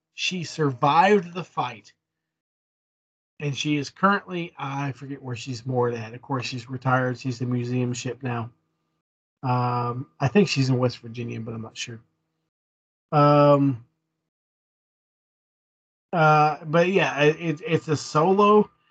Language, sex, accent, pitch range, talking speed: English, male, American, 120-165 Hz, 135 wpm